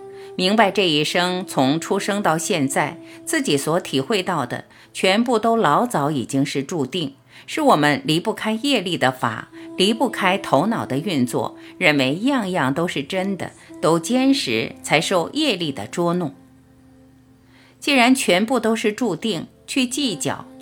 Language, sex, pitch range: Chinese, female, 135-220 Hz